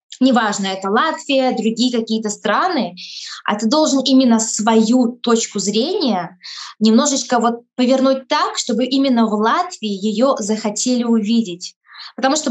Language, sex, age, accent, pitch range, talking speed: Russian, female, 20-39, native, 215-255 Hz, 125 wpm